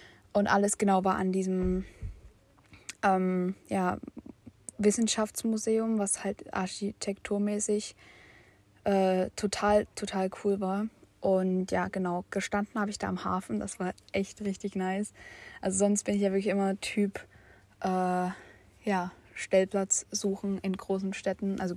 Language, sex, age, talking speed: German, female, 20-39, 130 wpm